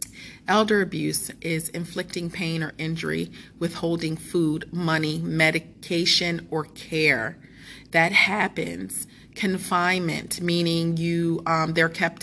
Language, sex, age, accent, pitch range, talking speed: English, female, 30-49, American, 150-175 Hz, 105 wpm